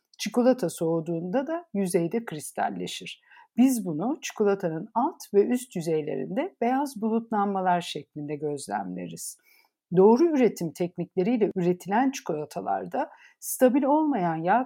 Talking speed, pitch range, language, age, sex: 100 wpm, 170-255 Hz, Turkish, 60-79, female